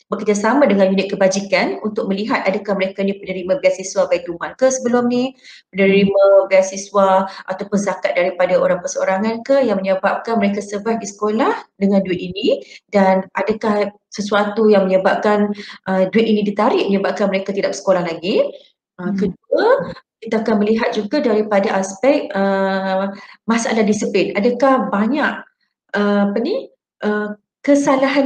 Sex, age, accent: female, 30-49, Malaysian